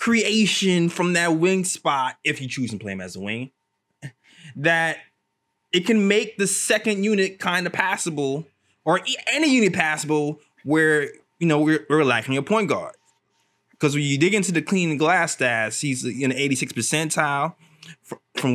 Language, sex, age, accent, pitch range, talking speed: English, male, 20-39, American, 135-190 Hz, 170 wpm